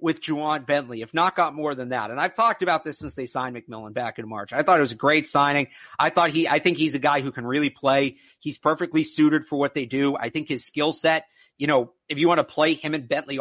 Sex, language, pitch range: male, English, 140-165 Hz